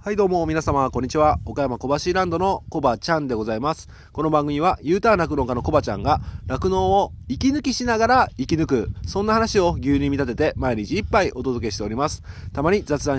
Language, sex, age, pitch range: Japanese, male, 30-49, 110-160 Hz